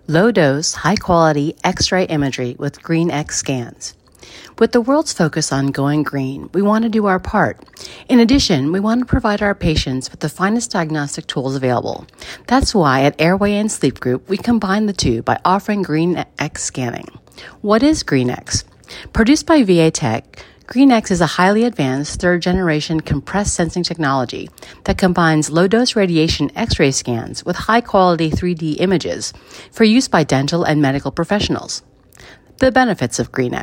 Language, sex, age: English, female, 40-59